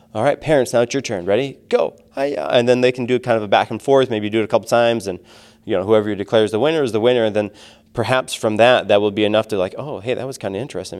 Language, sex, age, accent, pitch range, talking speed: English, male, 20-39, American, 95-110 Hz, 300 wpm